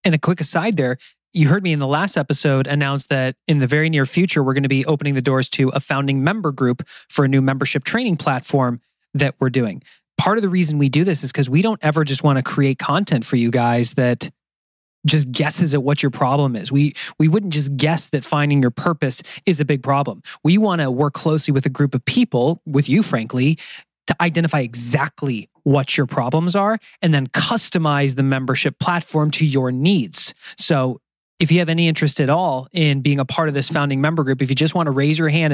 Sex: male